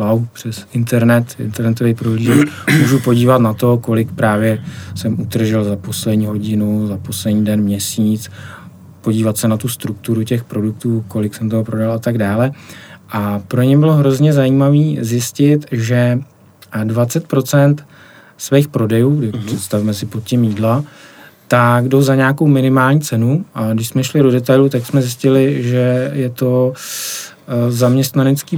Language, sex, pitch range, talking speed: Czech, male, 115-140 Hz, 145 wpm